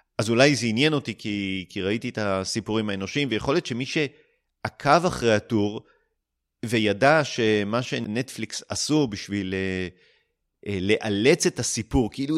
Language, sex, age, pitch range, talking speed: Hebrew, male, 30-49, 100-135 Hz, 135 wpm